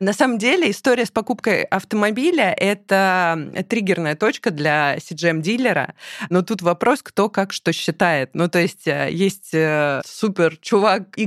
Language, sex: Russian, female